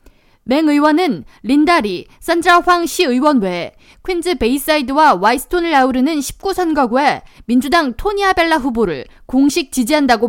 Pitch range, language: 260-345 Hz, Korean